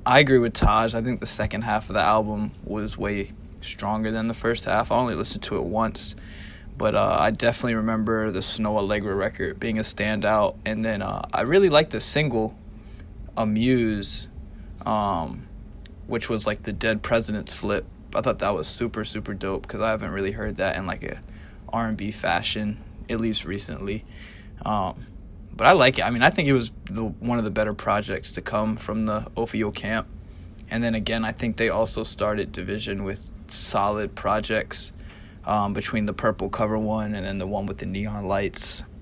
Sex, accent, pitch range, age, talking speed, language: male, American, 100-110 Hz, 20-39, 190 wpm, English